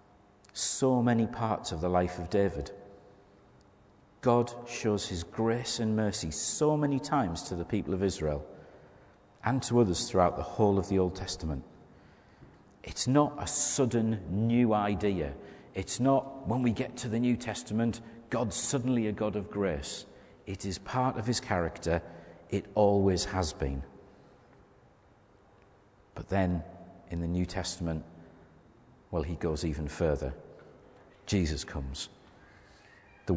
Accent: British